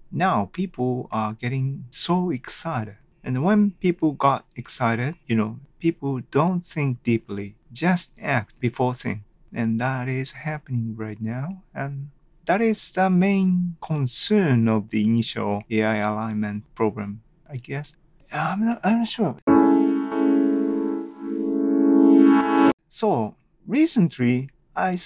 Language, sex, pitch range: Japanese, male, 115-170 Hz